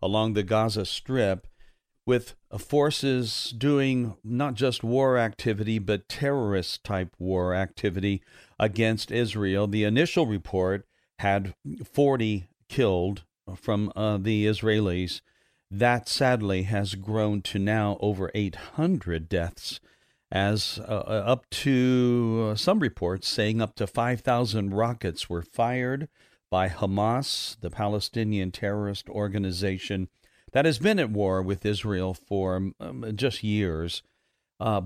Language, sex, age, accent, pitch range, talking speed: English, male, 50-69, American, 100-120 Hz, 115 wpm